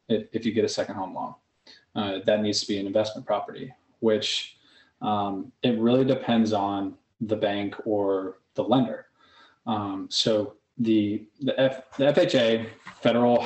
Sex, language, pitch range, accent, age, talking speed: male, English, 105-125 Hz, American, 20-39, 145 wpm